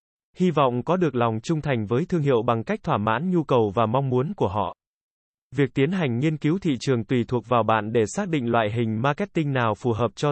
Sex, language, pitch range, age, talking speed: male, Vietnamese, 125-165 Hz, 20-39, 245 wpm